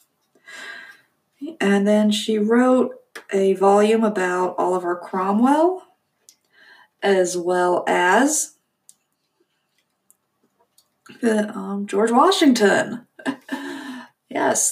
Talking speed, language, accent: 70 wpm, English, American